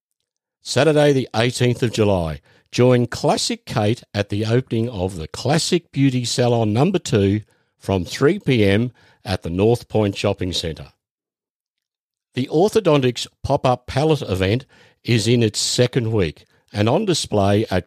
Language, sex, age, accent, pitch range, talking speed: English, male, 50-69, Australian, 100-125 Hz, 135 wpm